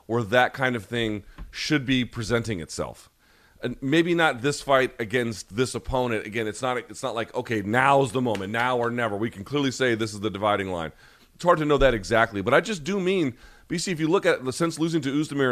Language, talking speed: English, 230 wpm